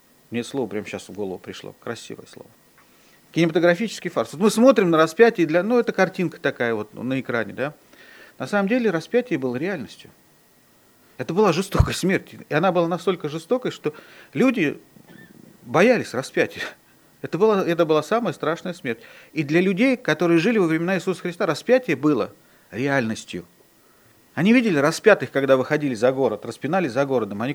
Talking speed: 160 wpm